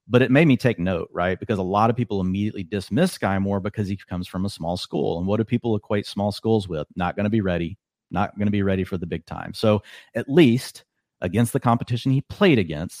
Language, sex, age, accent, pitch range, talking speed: English, male, 40-59, American, 90-105 Hz, 245 wpm